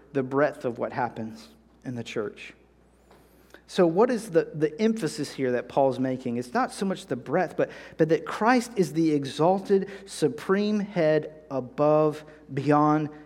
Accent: American